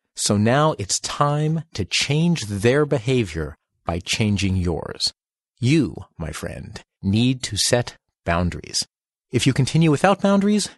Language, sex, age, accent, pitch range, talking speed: English, male, 40-59, American, 95-135 Hz, 130 wpm